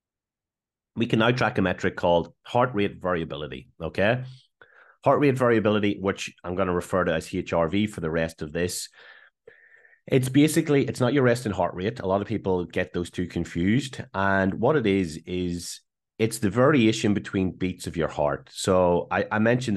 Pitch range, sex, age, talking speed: 85-105 Hz, male, 30-49, 180 wpm